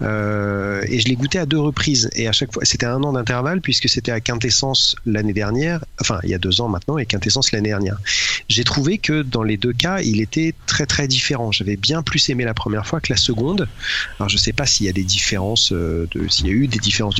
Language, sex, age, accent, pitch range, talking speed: French, male, 40-59, French, 105-135 Hz, 250 wpm